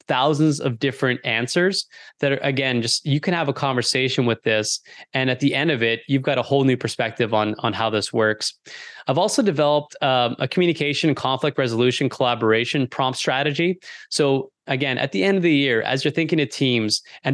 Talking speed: 195 wpm